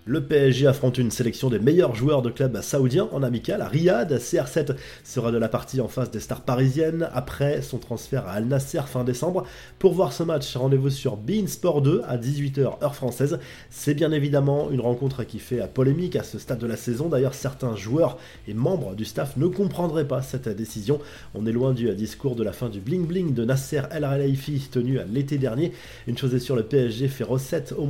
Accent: French